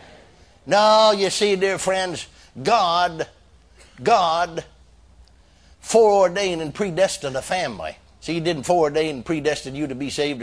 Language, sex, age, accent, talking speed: English, male, 60-79, American, 130 wpm